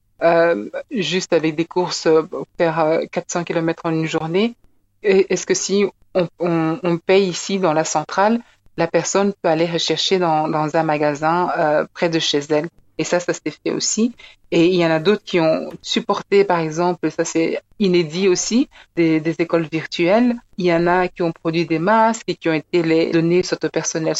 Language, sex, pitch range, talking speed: French, female, 160-185 Hz, 200 wpm